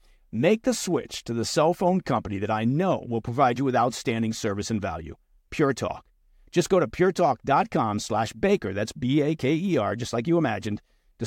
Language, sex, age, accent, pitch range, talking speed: English, male, 50-69, American, 110-155 Hz, 175 wpm